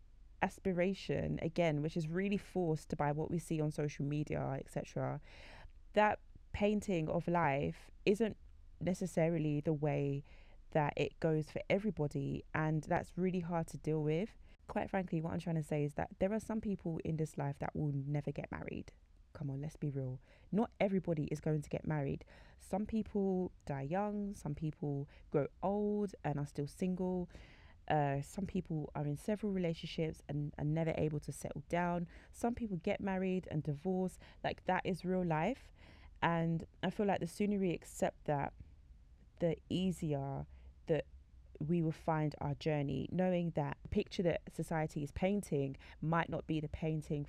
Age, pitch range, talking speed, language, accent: 20-39, 145-185 Hz, 170 wpm, English, British